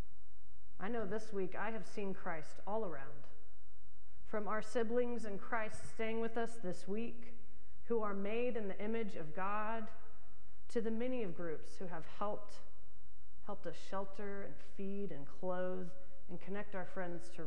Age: 40-59